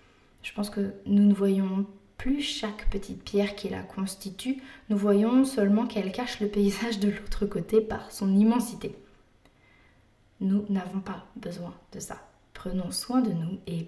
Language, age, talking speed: French, 20-39, 160 wpm